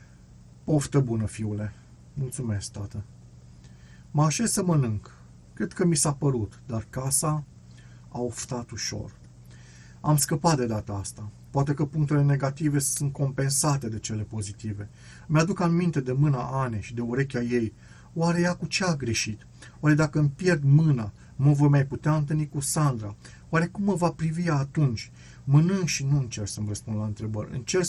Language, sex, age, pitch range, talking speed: Romanian, male, 40-59, 105-145 Hz, 160 wpm